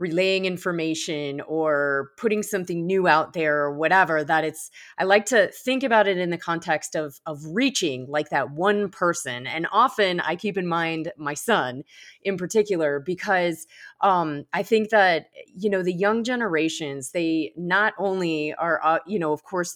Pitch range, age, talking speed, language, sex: 155-200 Hz, 30-49, 175 wpm, English, female